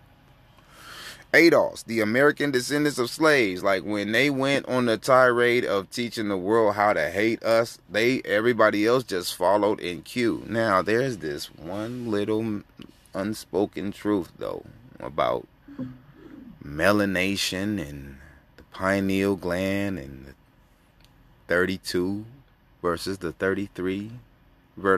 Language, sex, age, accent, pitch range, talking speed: English, male, 30-49, American, 90-120 Hz, 115 wpm